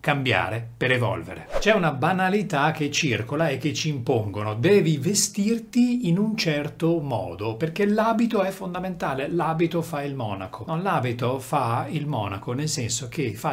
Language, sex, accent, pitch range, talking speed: Italian, male, native, 125-175 Hz, 155 wpm